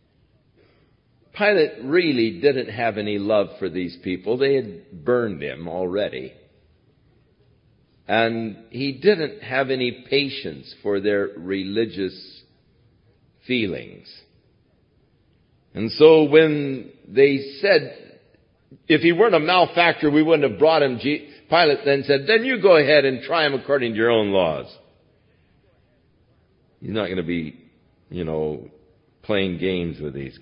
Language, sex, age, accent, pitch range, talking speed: English, male, 60-79, American, 105-150 Hz, 130 wpm